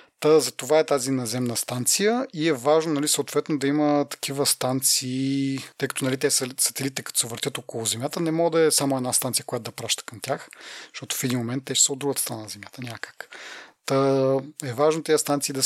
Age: 30-49